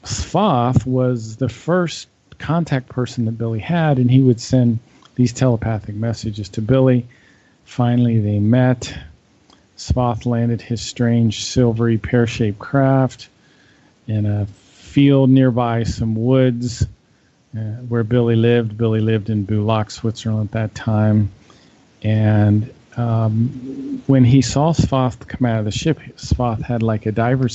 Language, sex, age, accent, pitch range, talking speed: English, male, 40-59, American, 110-130 Hz, 135 wpm